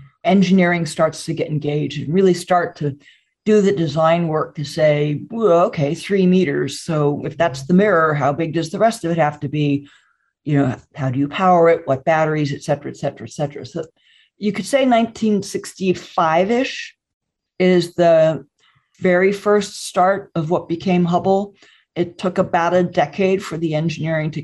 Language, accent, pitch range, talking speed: English, American, 145-180 Hz, 175 wpm